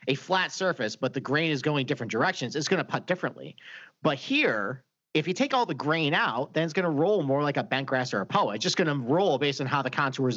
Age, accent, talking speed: 40-59, American, 265 wpm